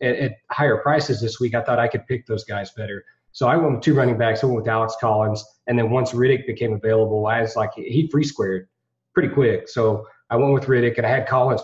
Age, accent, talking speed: 30-49, American, 245 wpm